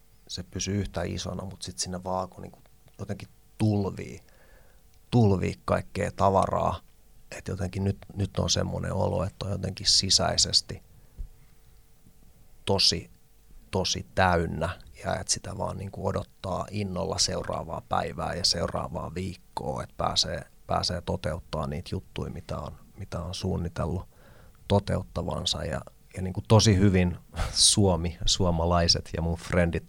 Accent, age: native, 30-49